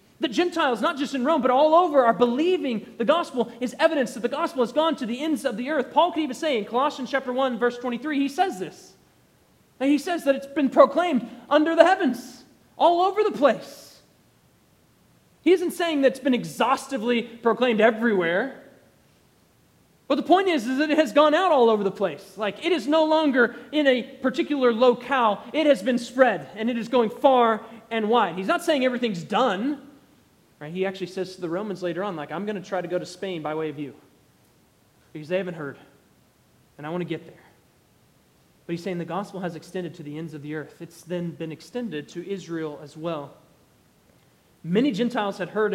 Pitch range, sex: 170-270 Hz, male